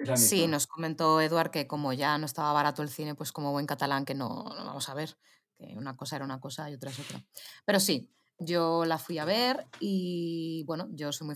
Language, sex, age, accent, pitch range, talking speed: Spanish, female, 20-39, Spanish, 145-170 Hz, 225 wpm